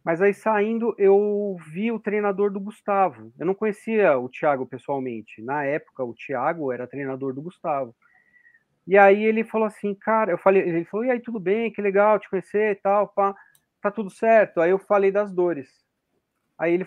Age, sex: 40-59, male